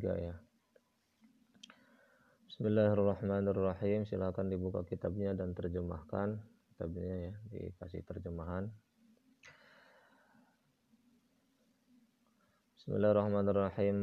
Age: 20-39